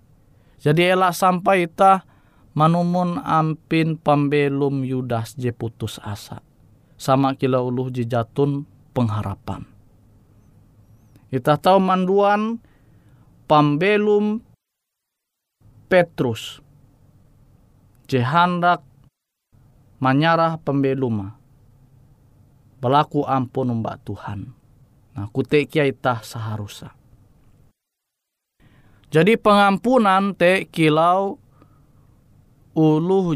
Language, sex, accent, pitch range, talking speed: Indonesian, male, native, 115-145 Hz, 70 wpm